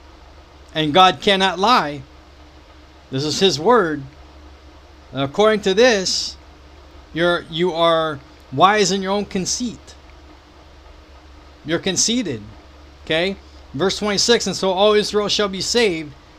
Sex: male